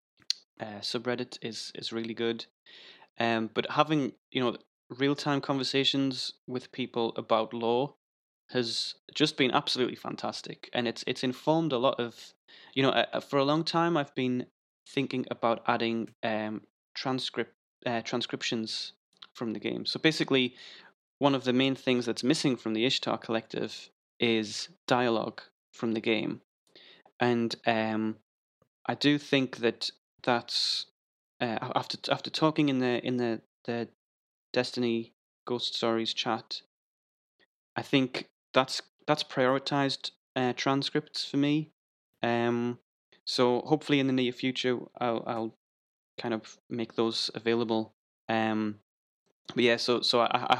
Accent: British